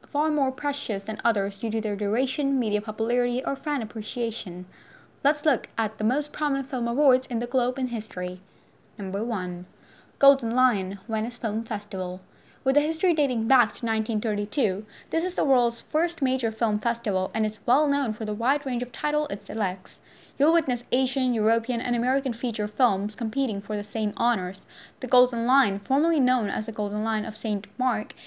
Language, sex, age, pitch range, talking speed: Russian, female, 10-29, 215-270 Hz, 185 wpm